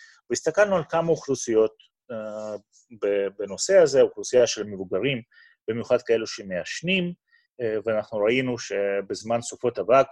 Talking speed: 115 wpm